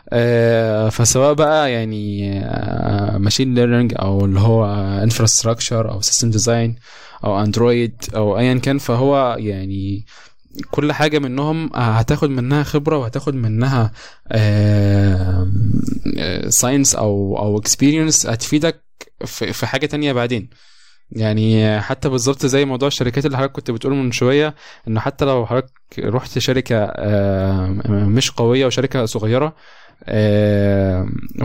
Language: Arabic